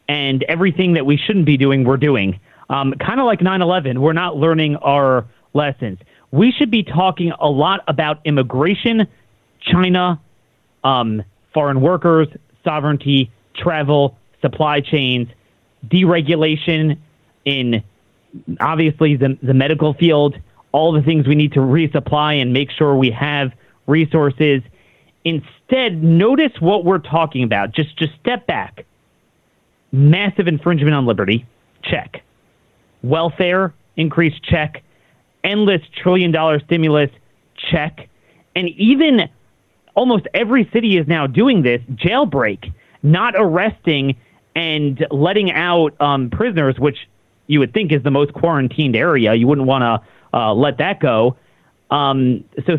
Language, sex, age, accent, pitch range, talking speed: English, male, 30-49, American, 130-170 Hz, 130 wpm